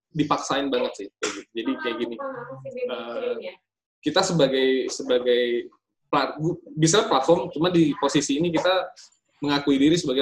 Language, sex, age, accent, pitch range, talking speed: Indonesian, male, 20-39, native, 125-180 Hz, 110 wpm